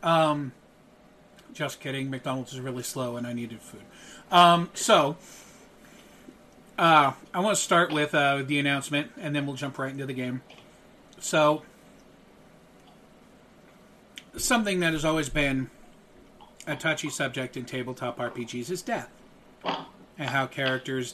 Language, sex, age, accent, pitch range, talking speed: English, male, 40-59, American, 130-165 Hz, 135 wpm